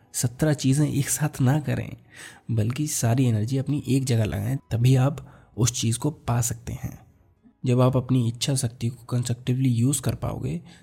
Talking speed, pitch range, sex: 170 wpm, 110-130 Hz, male